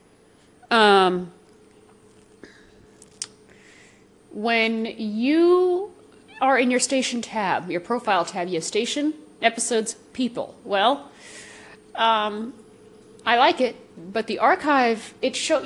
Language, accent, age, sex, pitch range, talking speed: English, American, 40-59, female, 215-270 Hz, 100 wpm